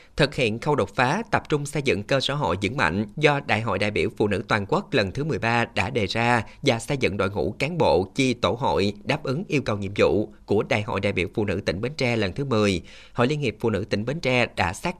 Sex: male